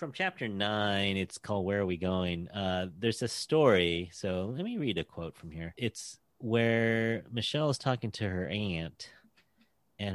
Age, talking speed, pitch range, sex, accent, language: 30-49, 175 wpm, 90-115 Hz, male, American, English